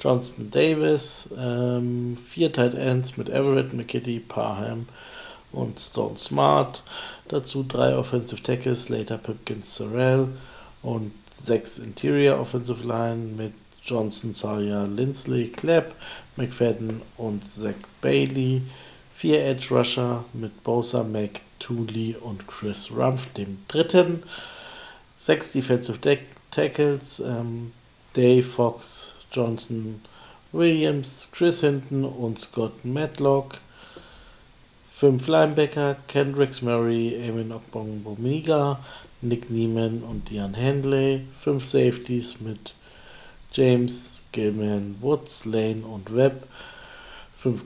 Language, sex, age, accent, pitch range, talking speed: German, male, 50-69, German, 110-135 Hz, 100 wpm